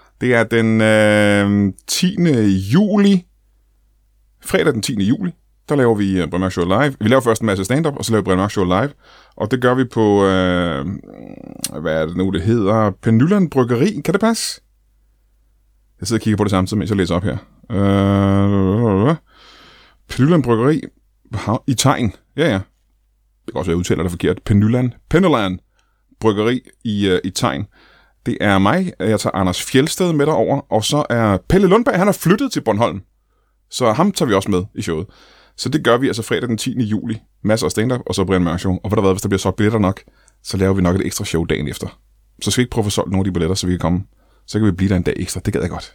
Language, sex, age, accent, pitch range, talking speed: Danish, male, 30-49, native, 95-125 Hz, 225 wpm